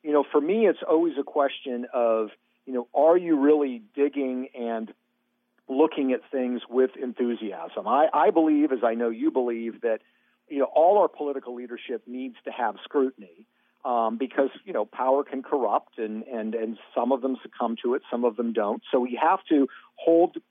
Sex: male